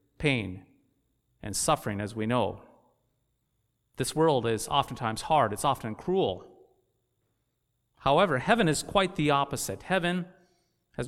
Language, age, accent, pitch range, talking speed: English, 30-49, American, 115-160 Hz, 120 wpm